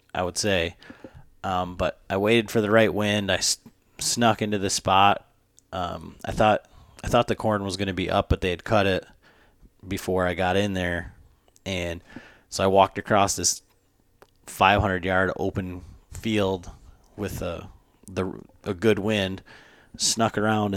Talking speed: 170 wpm